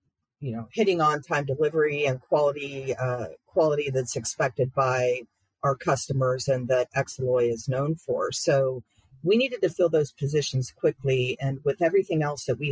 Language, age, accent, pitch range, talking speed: English, 50-69, American, 130-150 Hz, 165 wpm